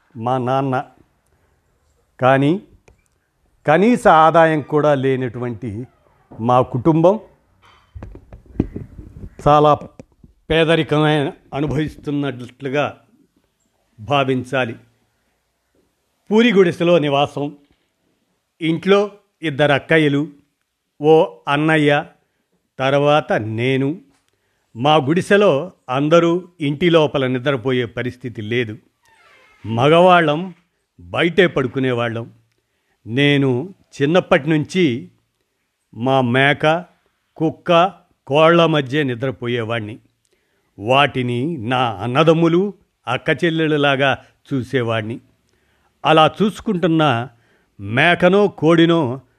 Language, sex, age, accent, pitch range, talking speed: Telugu, male, 50-69, native, 125-160 Hz, 65 wpm